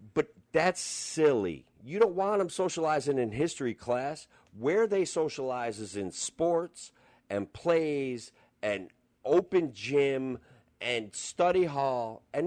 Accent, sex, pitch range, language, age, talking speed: American, male, 120-170 Hz, English, 50-69, 120 wpm